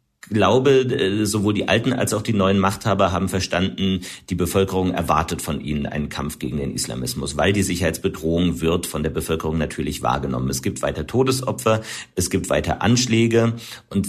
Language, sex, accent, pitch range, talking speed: German, male, German, 90-115 Hz, 165 wpm